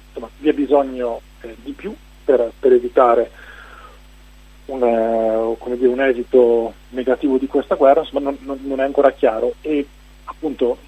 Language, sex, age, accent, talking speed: Italian, male, 30-49, native, 145 wpm